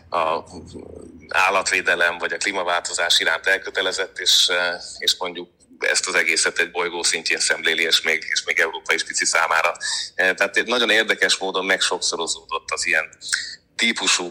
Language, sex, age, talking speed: Hungarian, male, 30-49, 135 wpm